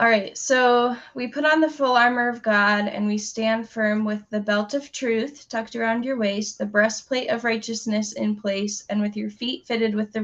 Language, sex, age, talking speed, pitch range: English, female, 10-29, 215 wpm, 205-235 Hz